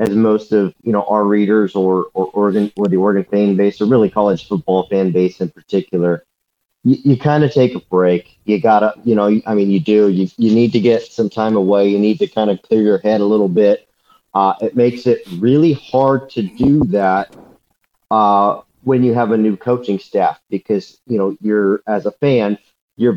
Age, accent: 40-59, American